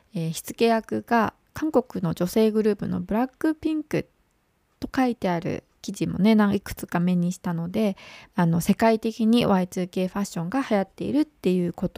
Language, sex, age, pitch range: English, female, 20-39, 175-245 Hz